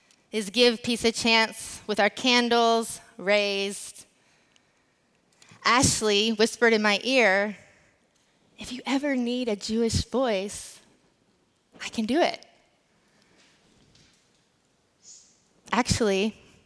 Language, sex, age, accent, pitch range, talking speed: English, female, 20-39, American, 205-245 Hz, 95 wpm